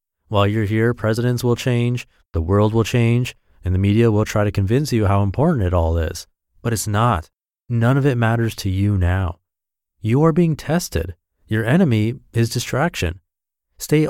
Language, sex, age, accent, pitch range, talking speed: English, male, 30-49, American, 90-125 Hz, 180 wpm